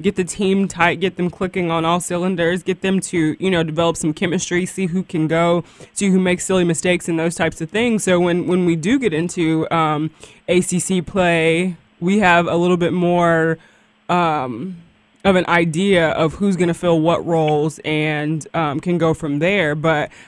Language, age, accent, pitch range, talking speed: English, 20-39, American, 160-185 Hz, 195 wpm